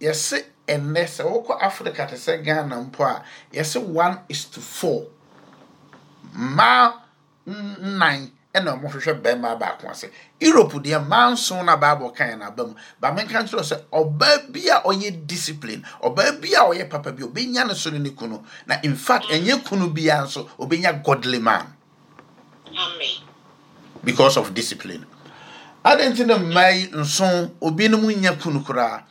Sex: male